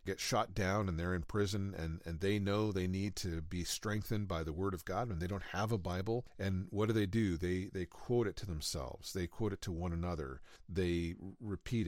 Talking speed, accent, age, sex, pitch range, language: 230 wpm, American, 50-69, male, 85-110 Hz, English